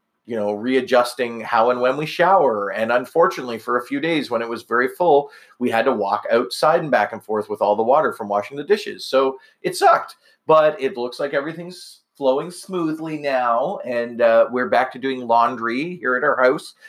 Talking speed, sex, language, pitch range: 205 wpm, male, English, 120-155 Hz